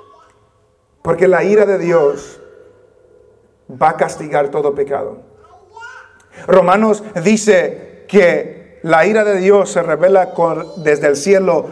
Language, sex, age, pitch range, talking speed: English, male, 40-59, 190-255 Hz, 115 wpm